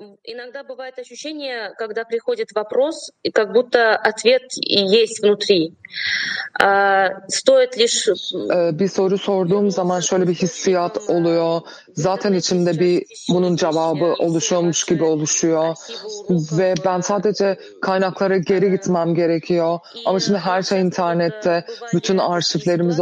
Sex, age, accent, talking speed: female, 30-49, native, 115 wpm